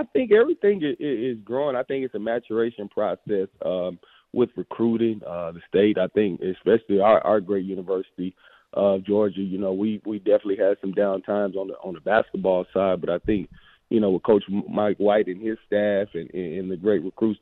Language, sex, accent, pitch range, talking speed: English, male, American, 100-120 Hz, 205 wpm